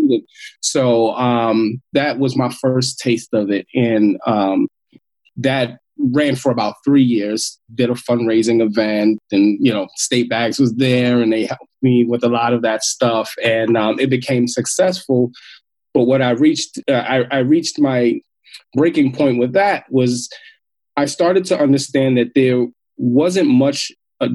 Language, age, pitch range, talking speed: English, 20-39, 115-135 Hz, 165 wpm